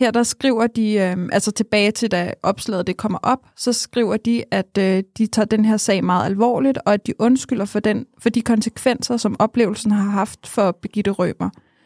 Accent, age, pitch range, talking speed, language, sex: native, 20-39, 205-235 Hz, 195 wpm, Danish, female